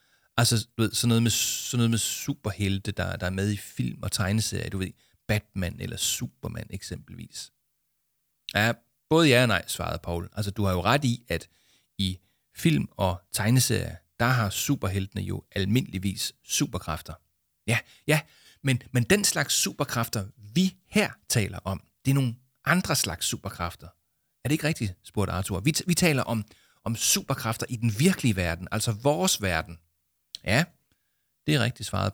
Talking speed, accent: 160 wpm, Danish